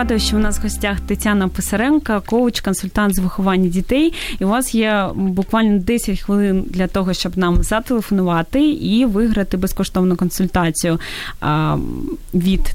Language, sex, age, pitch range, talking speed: Ukrainian, female, 20-39, 185-220 Hz, 140 wpm